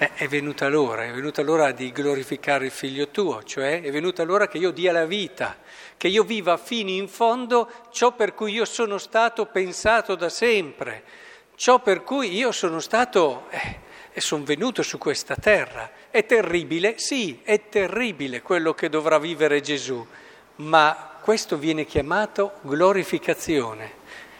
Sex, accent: male, native